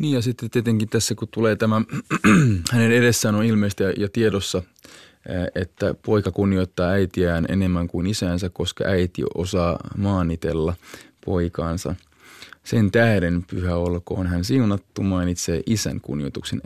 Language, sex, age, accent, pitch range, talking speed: Finnish, male, 20-39, native, 90-115 Hz, 125 wpm